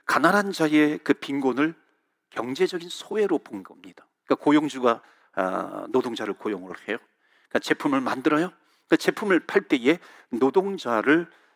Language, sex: Korean, male